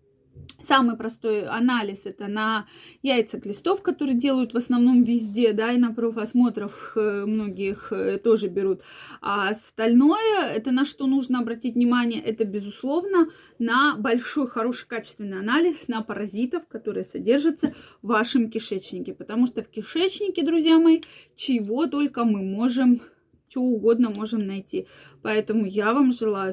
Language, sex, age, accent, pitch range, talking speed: Russian, female, 20-39, native, 215-260 Hz, 135 wpm